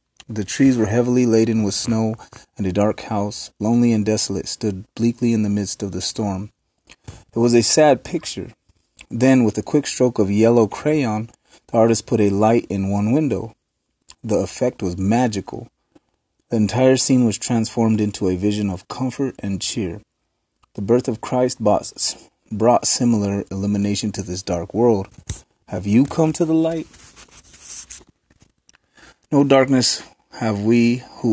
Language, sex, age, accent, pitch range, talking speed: English, male, 30-49, American, 100-120 Hz, 155 wpm